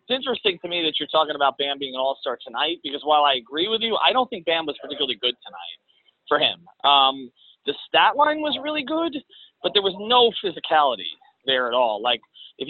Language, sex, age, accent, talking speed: English, male, 30-49, American, 215 wpm